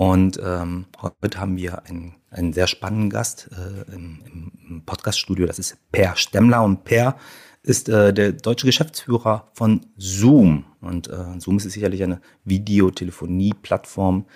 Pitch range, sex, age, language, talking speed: 90-100 Hz, male, 30-49, German, 140 wpm